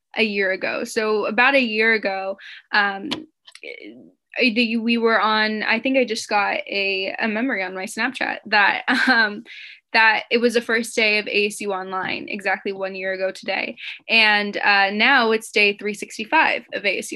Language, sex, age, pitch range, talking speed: English, female, 10-29, 200-240 Hz, 155 wpm